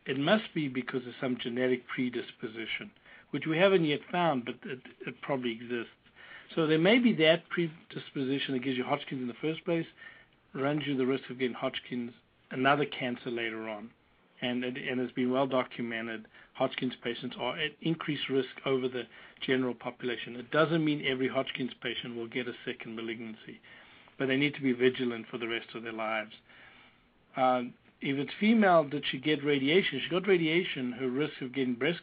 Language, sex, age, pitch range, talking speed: English, male, 60-79, 120-145 Hz, 180 wpm